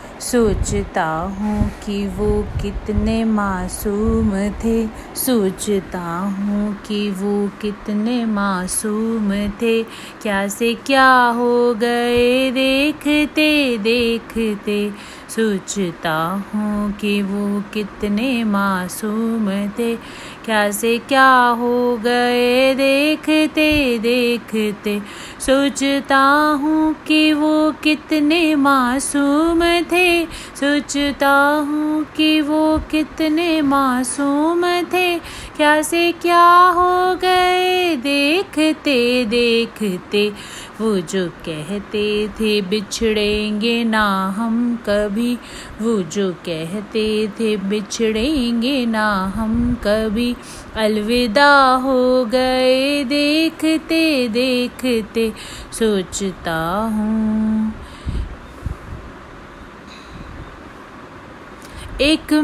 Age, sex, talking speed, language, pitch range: 30-49, female, 75 wpm, Hindi, 210-300 Hz